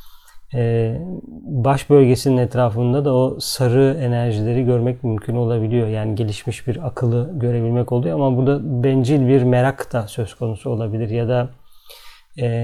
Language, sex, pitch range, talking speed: Turkish, male, 120-135 Hz, 140 wpm